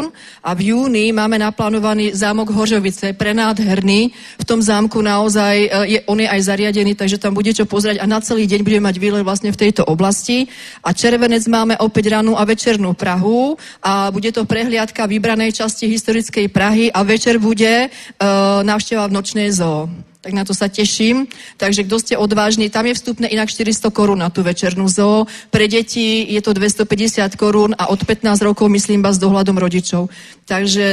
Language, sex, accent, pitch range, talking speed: Czech, female, native, 205-230 Hz, 180 wpm